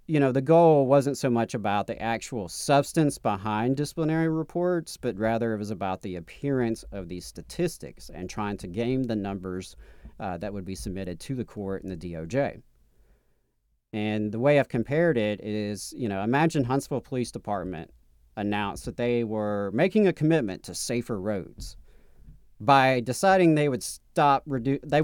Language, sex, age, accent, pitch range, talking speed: English, male, 40-59, American, 100-140 Hz, 170 wpm